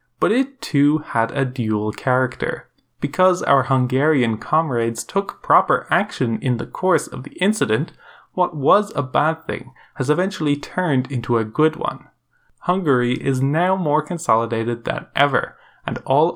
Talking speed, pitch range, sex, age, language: 150 wpm, 125-170 Hz, male, 20-39, English